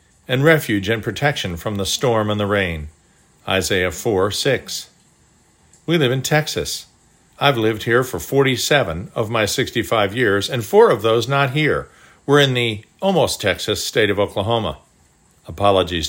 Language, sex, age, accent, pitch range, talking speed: English, male, 50-69, American, 105-140 Hz, 155 wpm